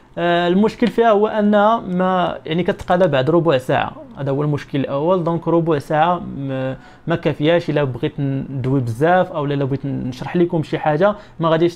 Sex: male